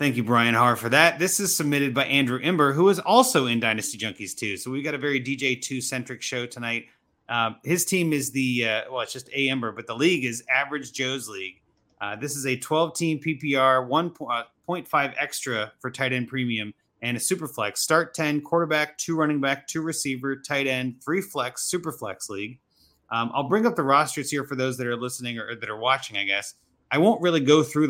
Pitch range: 120-150 Hz